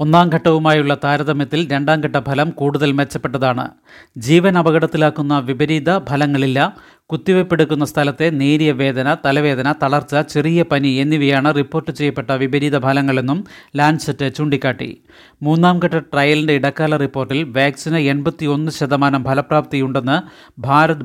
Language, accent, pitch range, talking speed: Malayalam, native, 140-155 Hz, 95 wpm